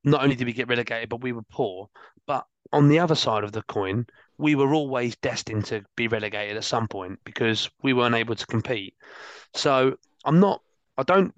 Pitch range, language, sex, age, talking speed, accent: 115-130 Hz, English, male, 30-49, 205 wpm, British